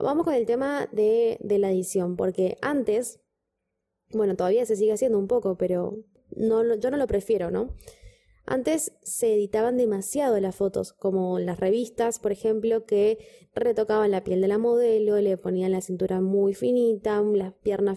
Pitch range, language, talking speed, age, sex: 200-245 Hz, Spanish, 165 wpm, 20-39, female